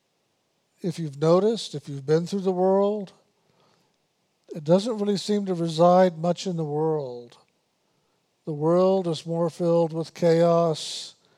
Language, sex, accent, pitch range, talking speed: English, male, American, 155-185 Hz, 135 wpm